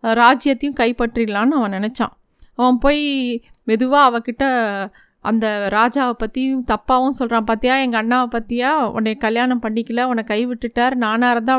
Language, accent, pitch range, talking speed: Tamil, native, 230-270 Hz, 130 wpm